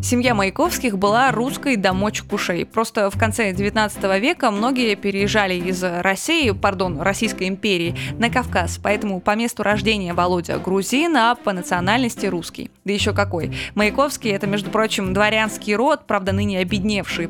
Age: 20-39